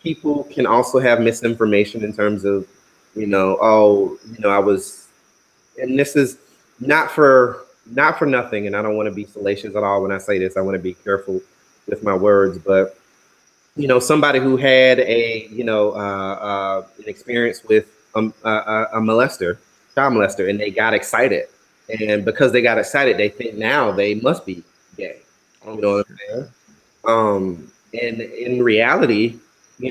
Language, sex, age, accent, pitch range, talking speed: English, male, 30-49, American, 105-130 Hz, 180 wpm